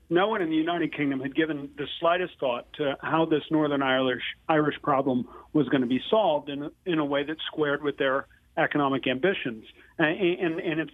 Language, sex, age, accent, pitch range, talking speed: English, male, 40-59, American, 140-180 Hz, 210 wpm